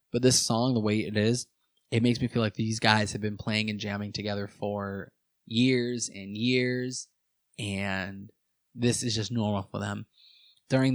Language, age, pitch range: English, 20-39, 105-120 Hz